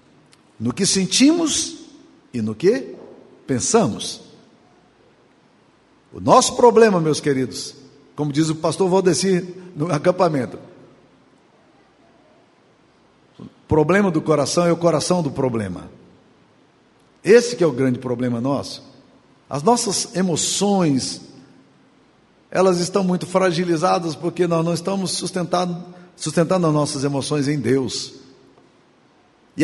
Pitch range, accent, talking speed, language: 145-195 Hz, Brazilian, 110 wpm, Portuguese